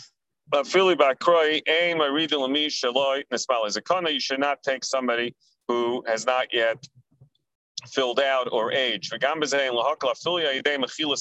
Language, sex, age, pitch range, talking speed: English, male, 40-59, 120-155 Hz, 85 wpm